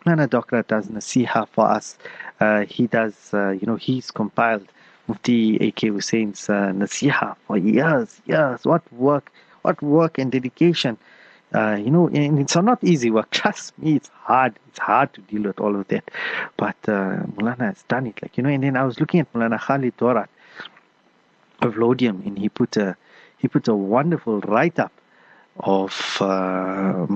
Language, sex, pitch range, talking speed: English, male, 105-135 Hz, 175 wpm